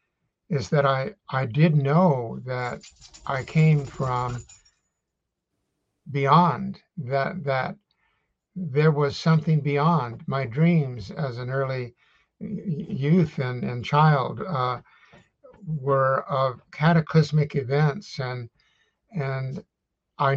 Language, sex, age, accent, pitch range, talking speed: English, male, 60-79, American, 135-165 Hz, 100 wpm